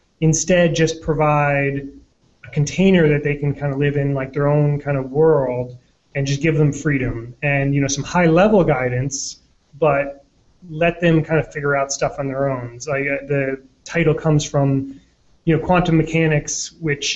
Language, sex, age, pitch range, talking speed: English, male, 30-49, 135-155 Hz, 180 wpm